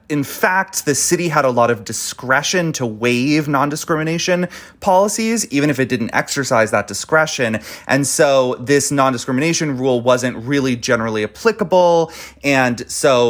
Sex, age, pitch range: male, 30-49, 120-165 Hz